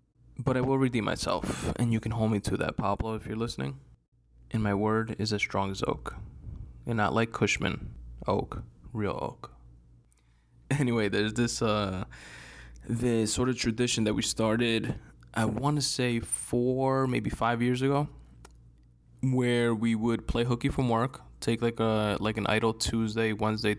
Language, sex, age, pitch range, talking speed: English, male, 20-39, 100-120 Hz, 165 wpm